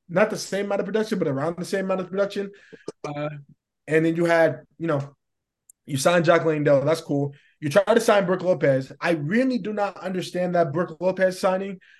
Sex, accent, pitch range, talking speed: male, American, 140-170 Hz, 205 wpm